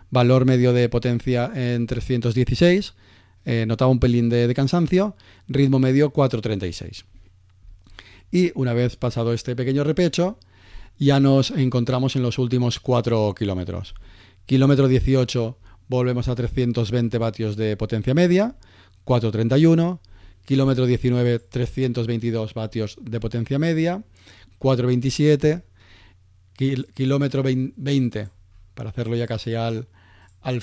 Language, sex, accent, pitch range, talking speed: Spanish, male, Spanish, 110-130 Hz, 110 wpm